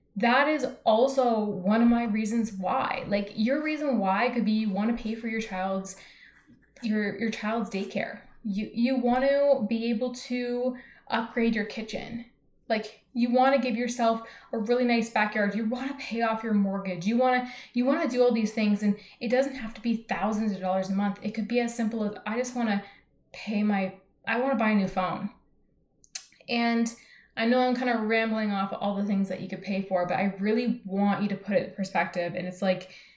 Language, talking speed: English, 220 wpm